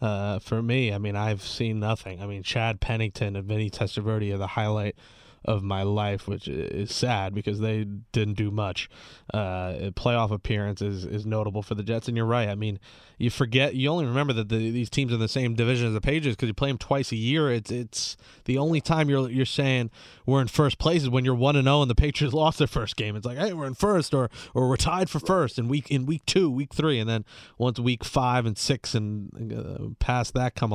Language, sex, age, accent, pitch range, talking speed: English, male, 20-39, American, 110-135 Hz, 240 wpm